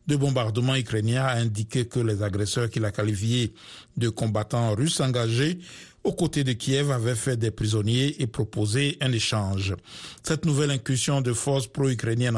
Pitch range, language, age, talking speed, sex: 110-135 Hz, French, 60-79, 160 wpm, male